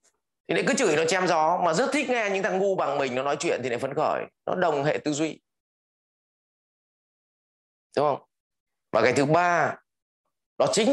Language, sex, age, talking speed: English, male, 20-39, 190 wpm